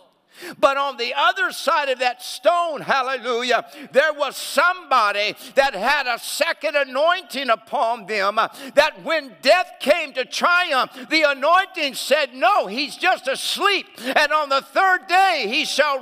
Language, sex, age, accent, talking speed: English, male, 60-79, American, 145 wpm